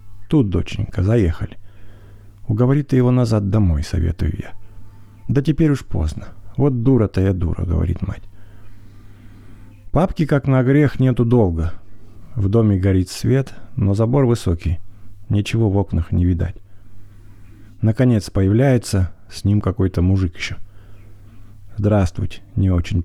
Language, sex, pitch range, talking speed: English, male, 95-115 Hz, 125 wpm